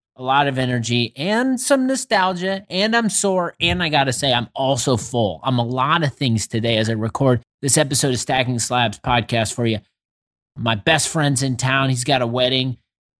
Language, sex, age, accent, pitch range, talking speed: English, male, 30-49, American, 120-165 Hz, 200 wpm